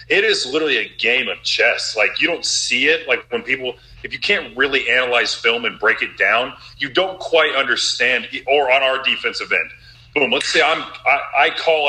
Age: 30-49